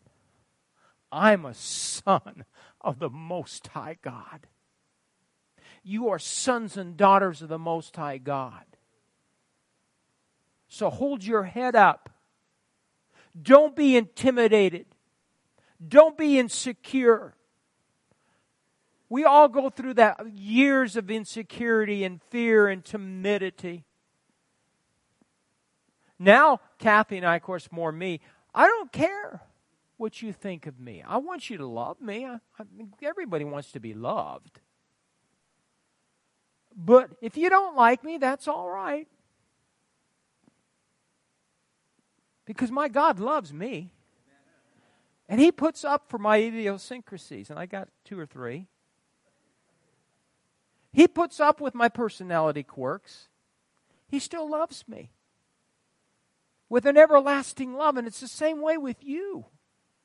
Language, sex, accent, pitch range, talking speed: English, male, American, 185-275 Hz, 115 wpm